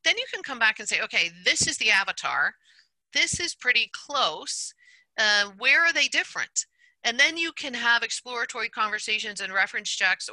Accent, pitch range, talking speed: American, 190-290 Hz, 180 wpm